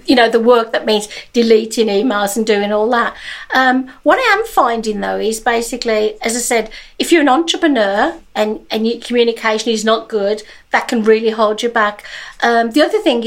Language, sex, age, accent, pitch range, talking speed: English, female, 50-69, British, 215-260 Hz, 200 wpm